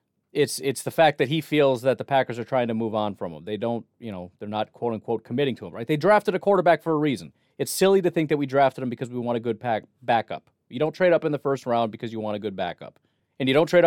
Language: English